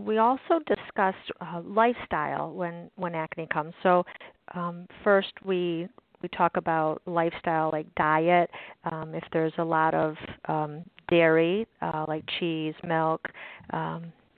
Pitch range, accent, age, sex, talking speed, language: 160-190 Hz, American, 40-59, female, 135 wpm, English